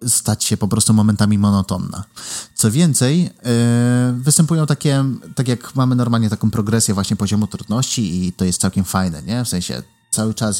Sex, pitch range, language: male, 105-140 Hz, Polish